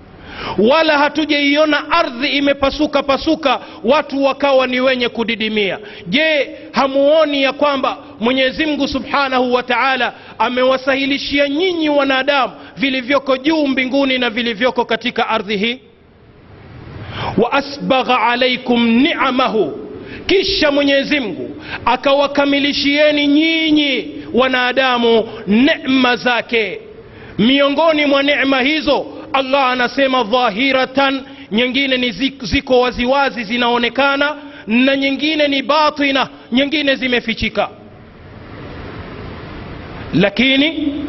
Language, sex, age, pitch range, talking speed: Swahili, male, 40-59, 250-290 Hz, 90 wpm